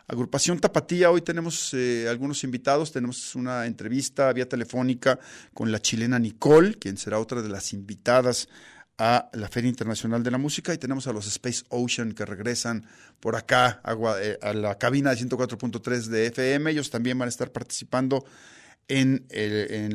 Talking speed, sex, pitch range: 165 wpm, male, 110-135 Hz